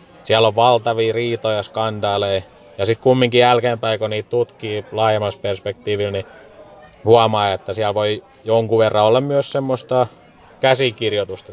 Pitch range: 105-125 Hz